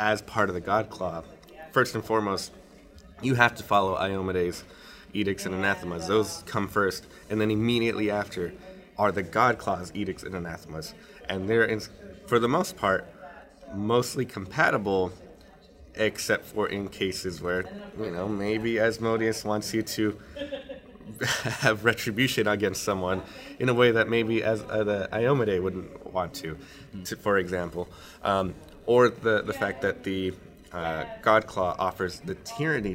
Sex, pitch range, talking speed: male, 90-115 Hz, 150 wpm